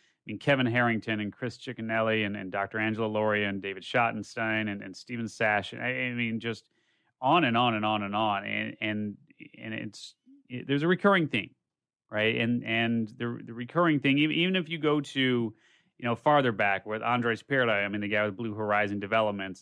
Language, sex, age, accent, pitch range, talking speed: English, male, 30-49, American, 105-130 Hz, 210 wpm